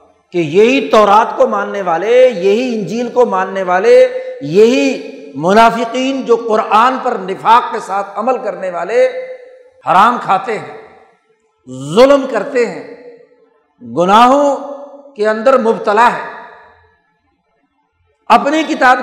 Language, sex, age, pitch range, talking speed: Urdu, male, 60-79, 195-275 Hz, 110 wpm